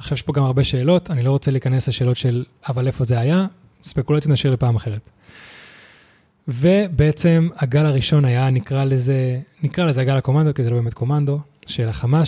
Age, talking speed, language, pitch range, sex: 20-39, 180 wpm, Hebrew, 115-140 Hz, male